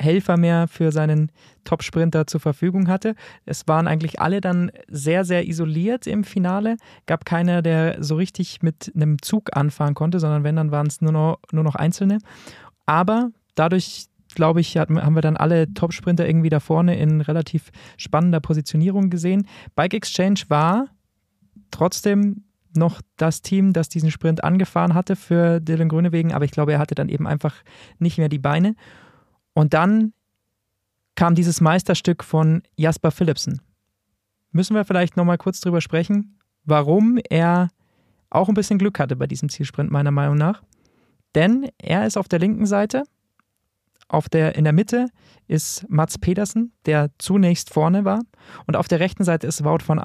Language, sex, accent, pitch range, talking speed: German, male, German, 155-185 Hz, 165 wpm